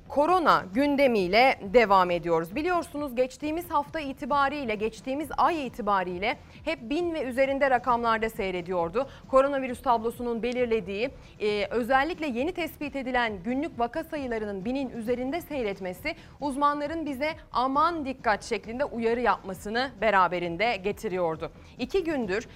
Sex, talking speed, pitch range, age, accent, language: female, 110 wpm, 200-280 Hz, 30-49, native, Turkish